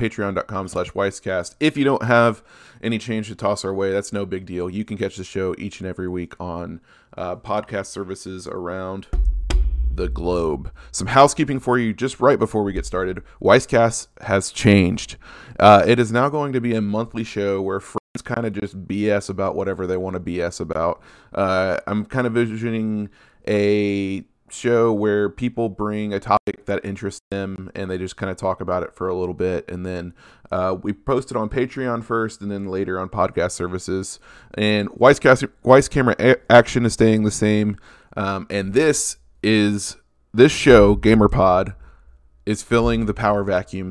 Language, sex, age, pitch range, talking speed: English, male, 20-39, 95-110 Hz, 185 wpm